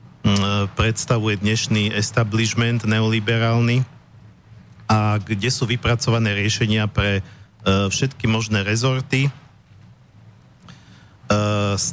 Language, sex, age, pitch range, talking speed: Slovak, male, 50-69, 105-120 Hz, 80 wpm